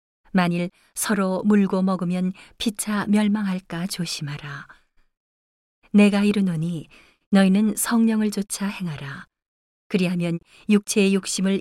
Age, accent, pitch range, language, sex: 40-59, native, 165-205 Hz, Korean, female